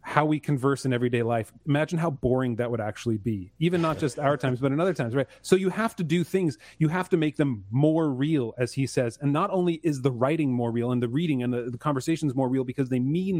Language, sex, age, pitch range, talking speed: English, male, 30-49, 125-155 Hz, 265 wpm